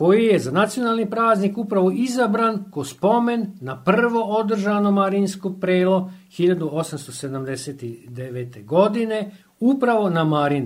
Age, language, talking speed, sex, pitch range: 50-69, Croatian, 105 wpm, male, 150-220 Hz